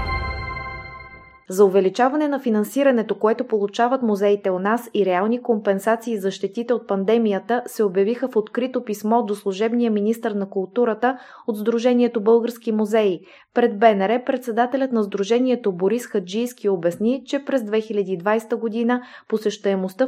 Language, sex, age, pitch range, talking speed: Bulgarian, female, 20-39, 195-235 Hz, 130 wpm